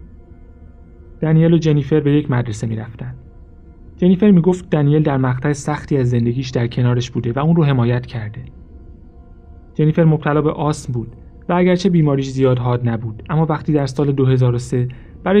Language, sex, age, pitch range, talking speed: Persian, male, 30-49, 110-155 Hz, 155 wpm